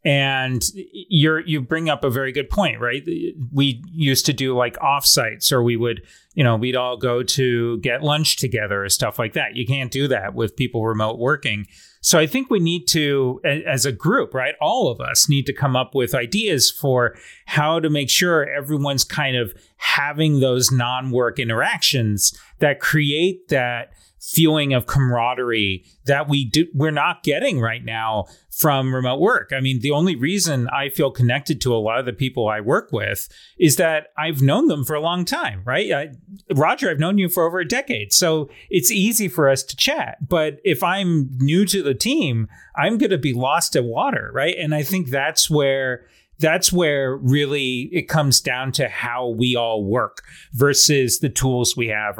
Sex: male